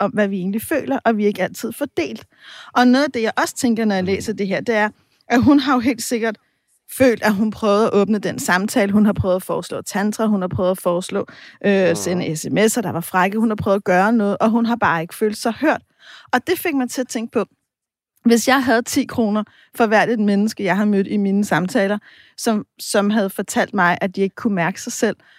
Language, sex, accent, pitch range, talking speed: Danish, female, native, 195-245 Hz, 250 wpm